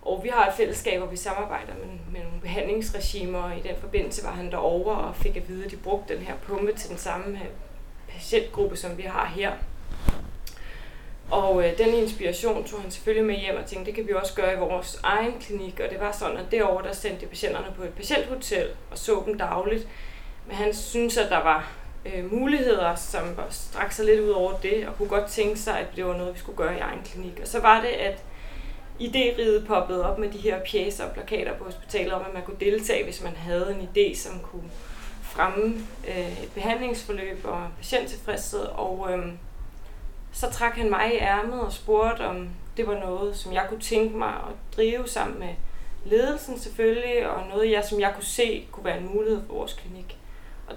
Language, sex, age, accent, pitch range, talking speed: Danish, female, 20-39, native, 185-230 Hz, 205 wpm